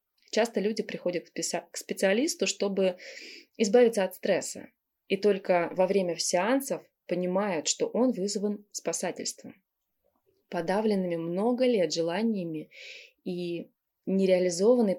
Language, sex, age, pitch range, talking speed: Russian, female, 20-39, 175-245 Hz, 100 wpm